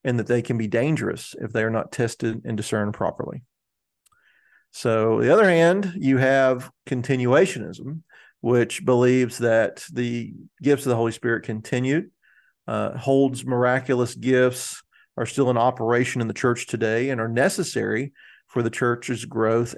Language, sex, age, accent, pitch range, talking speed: English, male, 40-59, American, 115-130 Hz, 155 wpm